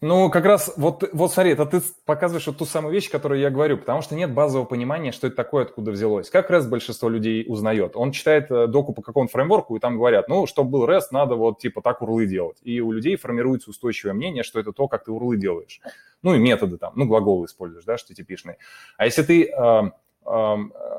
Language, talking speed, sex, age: Russian, 350 wpm, male, 20-39